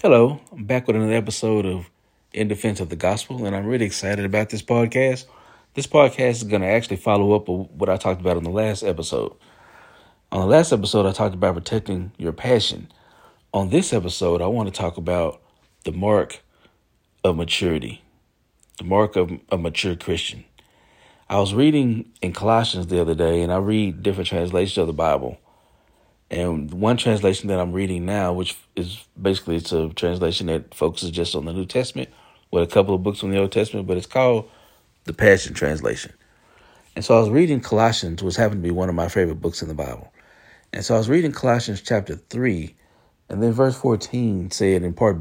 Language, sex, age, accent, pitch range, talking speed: English, male, 40-59, American, 90-110 Hz, 195 wpm